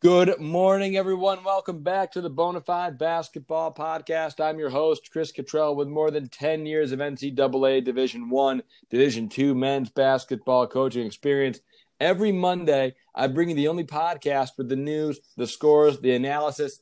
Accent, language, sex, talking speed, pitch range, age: American, English, male, 160 wpm, 130-155 Hz, 40-59